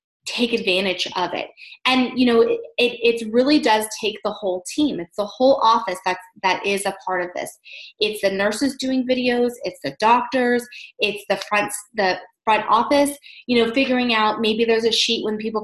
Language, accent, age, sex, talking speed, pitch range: English, American, 20-39, female, 195 wpm, 205-250 Hz